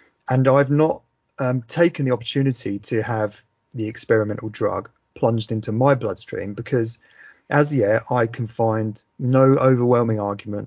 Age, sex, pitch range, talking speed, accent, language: 30-49, male, 110-130 Hz, 140 wpm, British, English